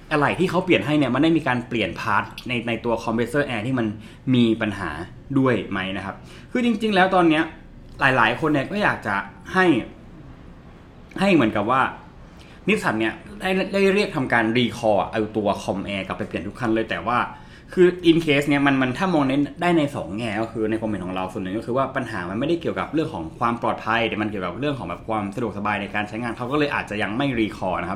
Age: 20-39